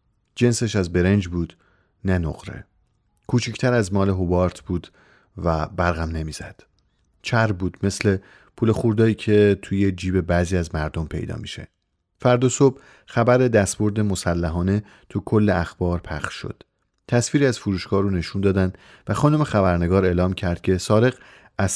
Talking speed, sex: 140 wpm, male